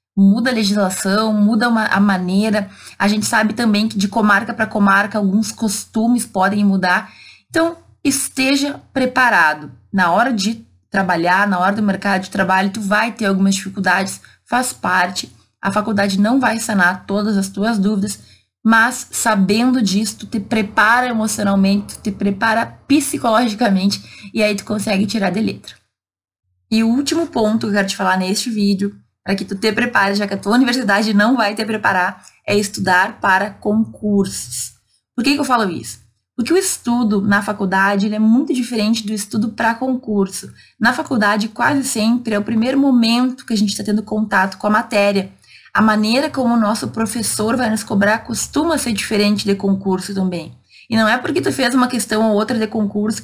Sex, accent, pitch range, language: female, Brazilian, 195-230 Hz, Portuguese